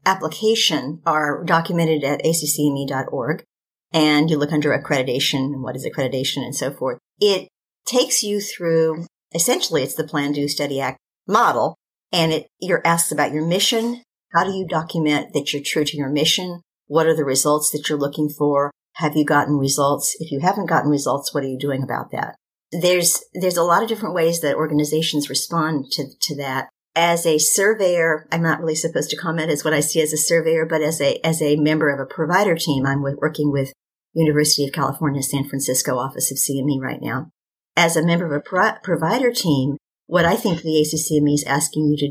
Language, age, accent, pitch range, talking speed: English, 50-69, American, 145-165 Hz, 195 wpm